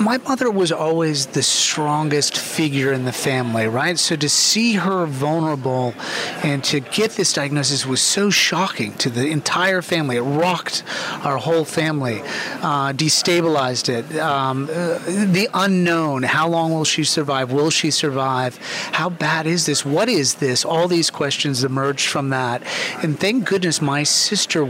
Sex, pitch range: male, 135-165 Hz